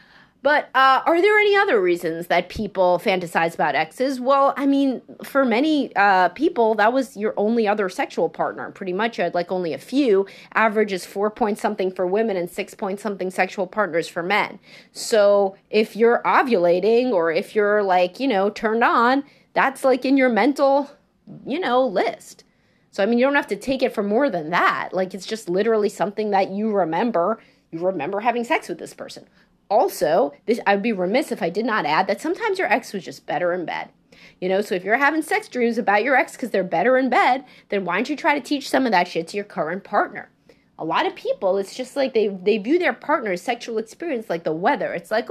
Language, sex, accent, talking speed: English, female, American, 210 wpm